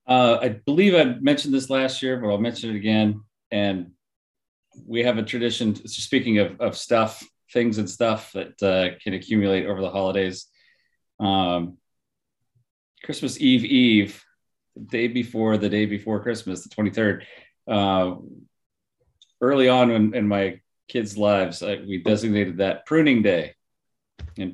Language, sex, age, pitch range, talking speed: English, male, 30-49, 95-120 Hz, 145 wpm